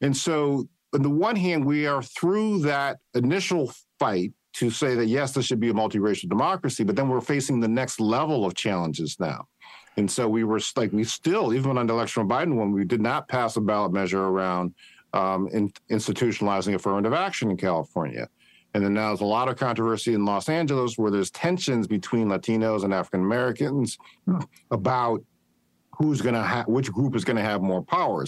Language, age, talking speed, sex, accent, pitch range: English, 50-69, 190 wpm, male, American, 100-135 Hz